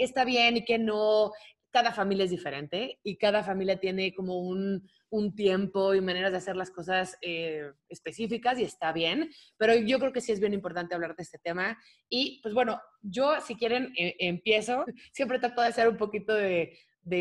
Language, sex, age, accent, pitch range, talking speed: Spanish, female, 20-39, Mexican, 180-230 Hz, 195 wpm